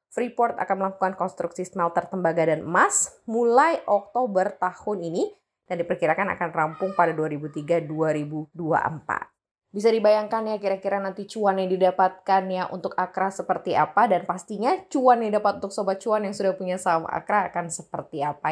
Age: 20-39